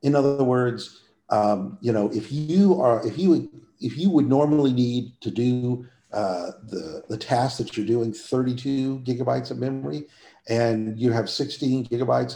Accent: American